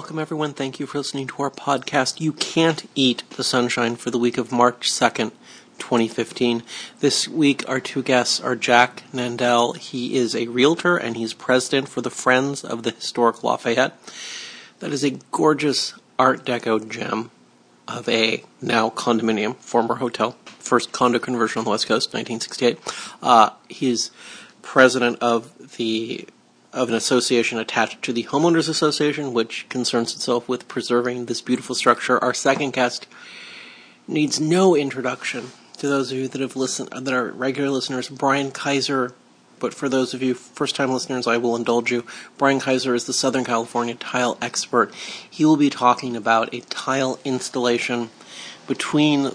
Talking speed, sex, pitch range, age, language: 160 wpm, male, 120-135 Hz, 40-59, English